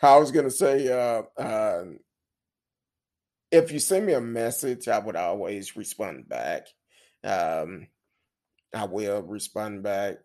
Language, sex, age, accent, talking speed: English, male, 30-49, American, 130 wpm